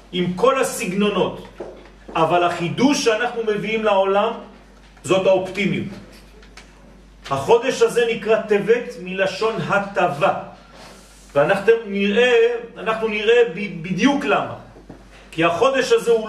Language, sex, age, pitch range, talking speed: French, male, 40-59, 190-230 Hz, 90 wpm